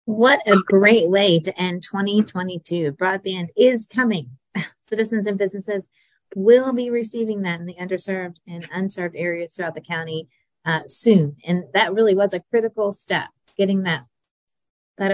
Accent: American